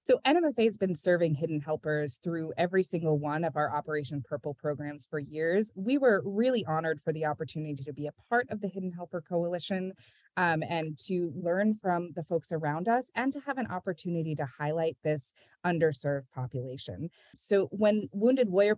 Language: English